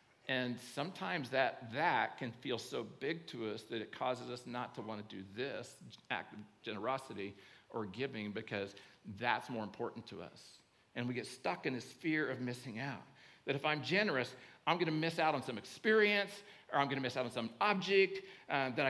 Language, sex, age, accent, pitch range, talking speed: English, male, 50-69, American, 120-170 Hz, 205 wpm